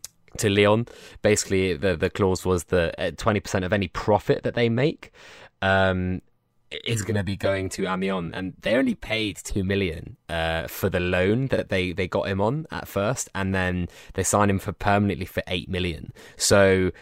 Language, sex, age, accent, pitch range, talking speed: English, male, 20-39, British, 90-110 Hz, 185 wpm